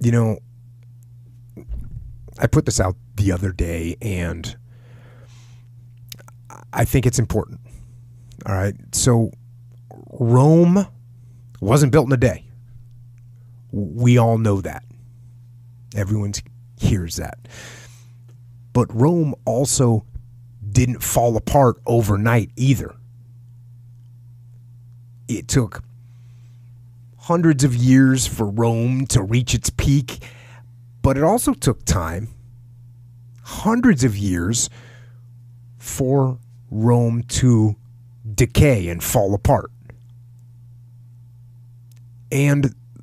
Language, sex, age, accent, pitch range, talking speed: English, male, 30-49, American, 115-125 Hz, 90 wpm